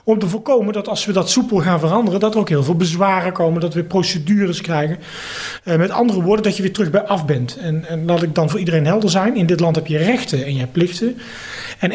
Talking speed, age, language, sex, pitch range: 255 wpm, 30-49, Dutch, male, 160-200 Hz